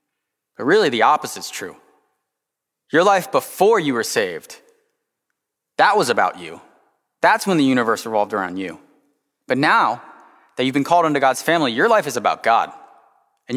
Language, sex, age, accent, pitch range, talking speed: English, male, 20-39, American, 135-210 Hz, 170 wpm